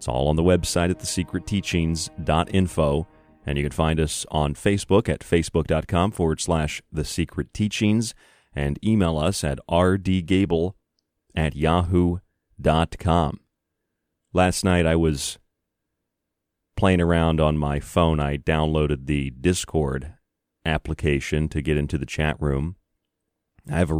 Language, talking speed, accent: English, 125 wpm, American